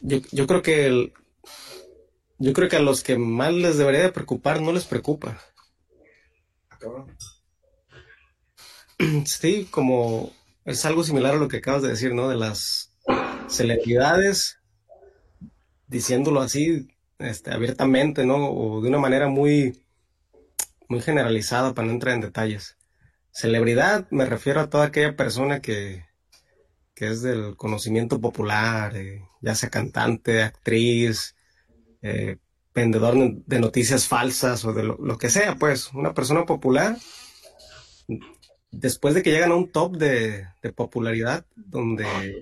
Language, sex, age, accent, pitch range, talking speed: Spanish, male, 30-49, Mexican, 115-150 Hz, 135 wpm